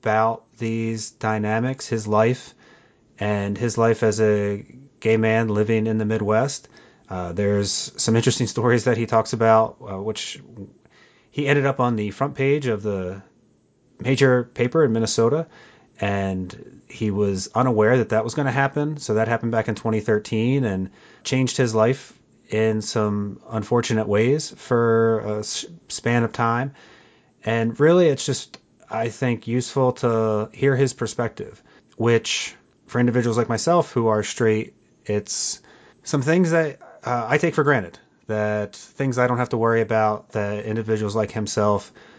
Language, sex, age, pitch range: English, male, 30-49, 110-125 Hz